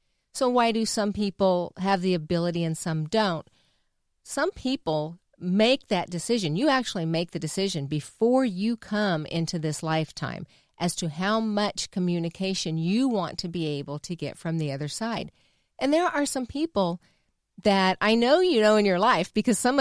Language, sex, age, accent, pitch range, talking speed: English, female, 40-59, American, 170-225 Hz, 175 wpm